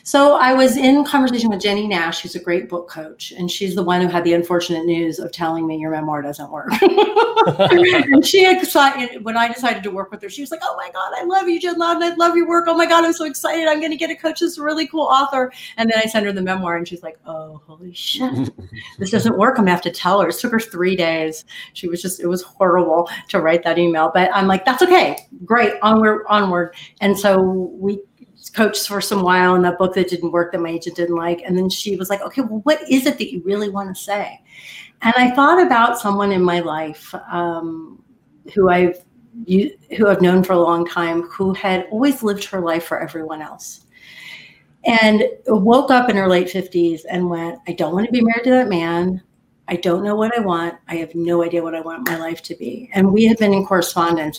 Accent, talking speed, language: American, 240 wpm, English